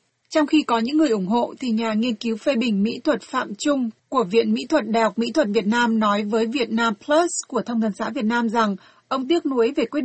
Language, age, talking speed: Vietnamese, 30-49, 265 wpm